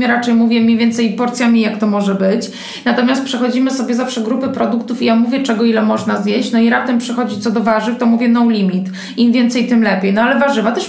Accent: native